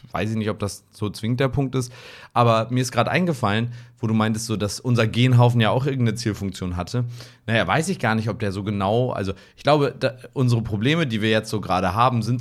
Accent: German